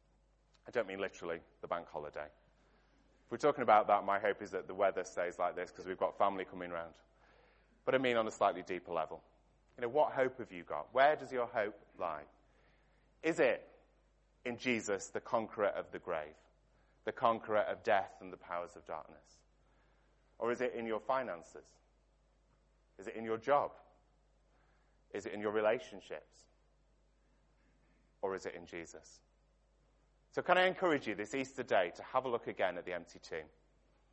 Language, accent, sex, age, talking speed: English, British, male, 30-49, 180 wpm